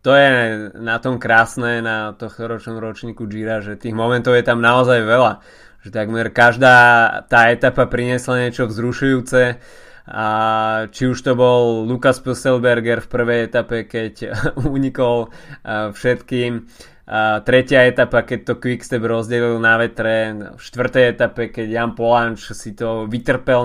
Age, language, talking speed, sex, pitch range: 20-39, Slovak, 140 wpm, male, 110-125 Hz